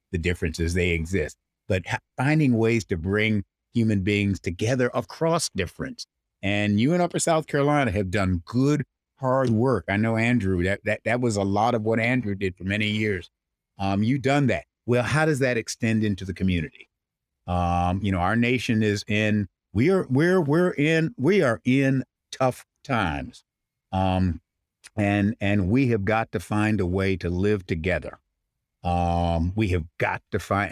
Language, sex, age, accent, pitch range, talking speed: English, male, 50-69, American, 95-130 Hz, 175 wpm